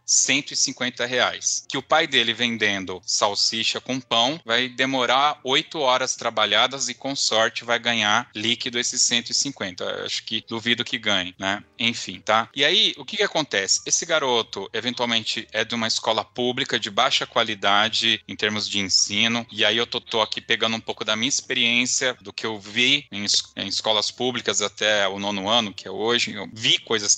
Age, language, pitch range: 10-29, Portuguese, 110-135 Hz